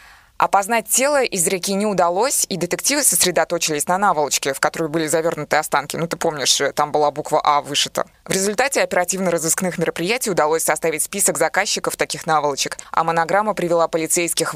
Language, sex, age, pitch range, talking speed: Russian, female, 20-39, 160-200 Hz, 155 wpm